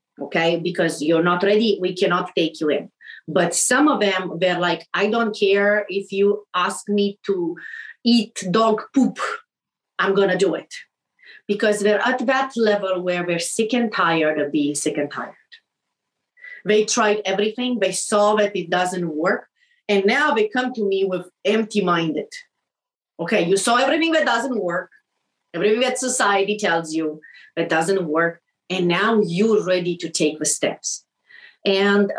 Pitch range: 175-220 Hz